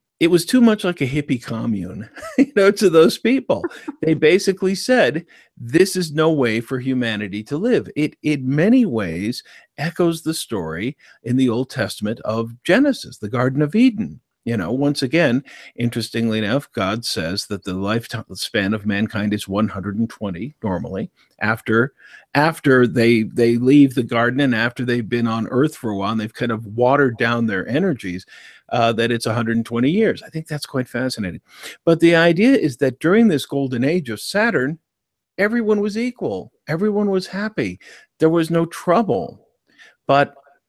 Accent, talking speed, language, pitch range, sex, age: American, 165 wpm, English, 115-170 Hz, male, 50-69